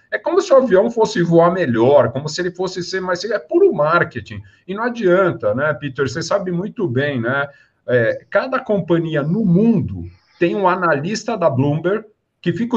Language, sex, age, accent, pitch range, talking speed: Portuguese, male, 50-69, Brazilian, 165-240 Hz, 185 wpm